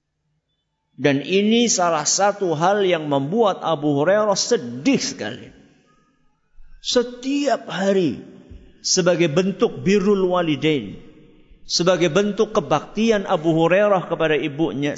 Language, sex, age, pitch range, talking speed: Malay, male, 50-69, 170-250 Hz, 95 wpm